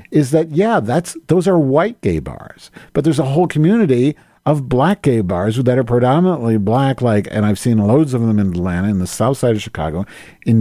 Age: 50-69